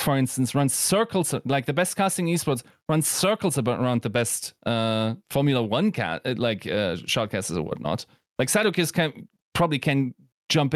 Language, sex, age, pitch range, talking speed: English, male, 30-49, 105-140 Hz, 160 wpm